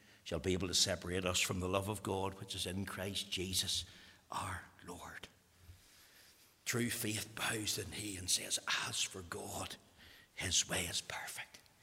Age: 60-79